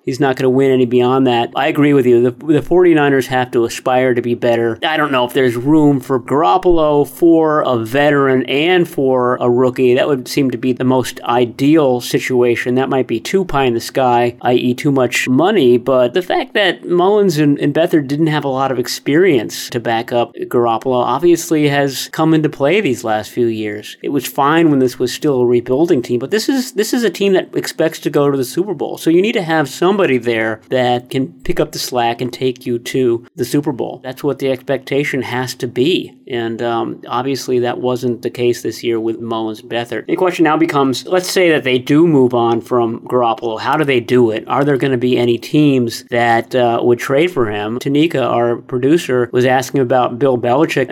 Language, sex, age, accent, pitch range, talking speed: English, male, 30-49, American, 120-150 Hz, 220 wpm